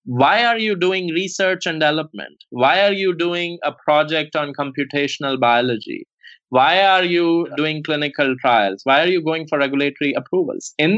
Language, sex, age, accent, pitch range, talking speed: English, male, 20-39, Indian, 130-165 Hz, 165 wpm